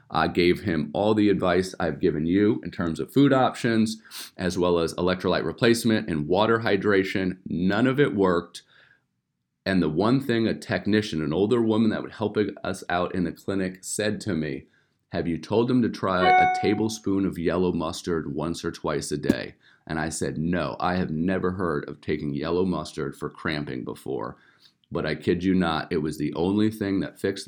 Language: English